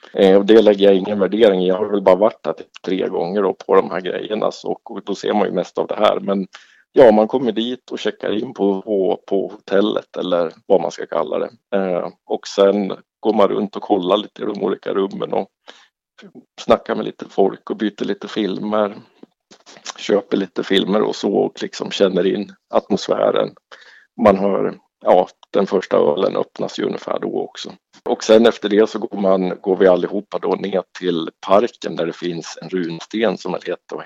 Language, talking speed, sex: Swedish, 195 wpm, male